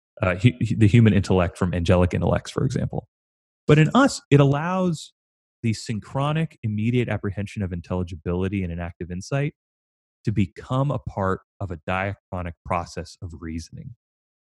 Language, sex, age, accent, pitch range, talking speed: English, male, 30-49, American, 90-120 Hz, 135 wpm